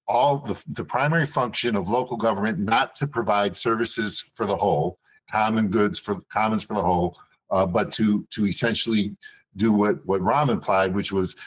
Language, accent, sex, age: English, American, male, 50-69